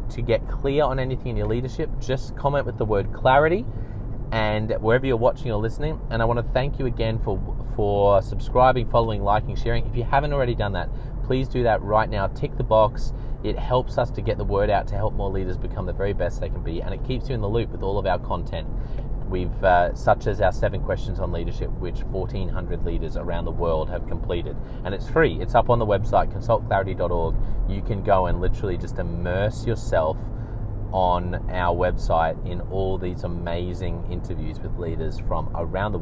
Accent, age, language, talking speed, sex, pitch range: Australian, 20-39, English, 205 wpm, male, 95-125 Hz